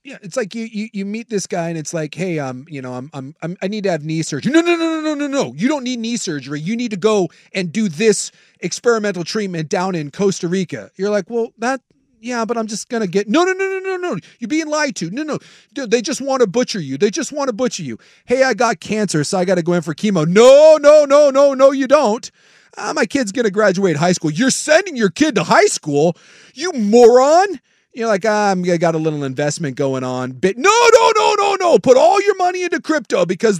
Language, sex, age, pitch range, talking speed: English, male, 40-59, 175-275 Hz, 255 wpm